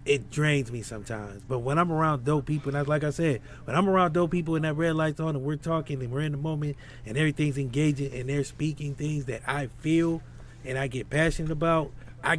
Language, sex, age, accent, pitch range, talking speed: English, male, 30-49, American, 120-150 Hz, 230 wpm